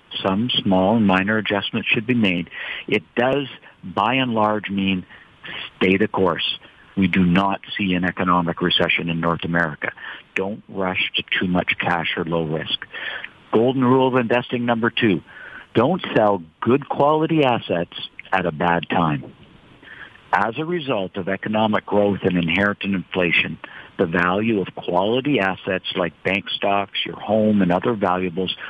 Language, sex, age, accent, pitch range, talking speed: English, male, 50-69, American, 90-110 Hz, 155 wpm